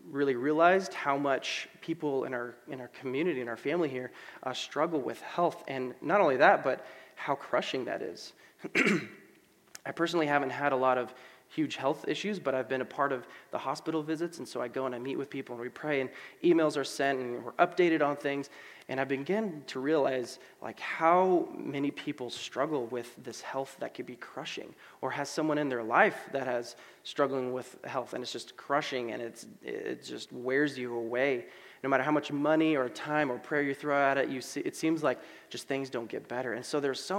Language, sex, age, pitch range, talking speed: English, male, 20-39, 130-155 Hz, 215 wpm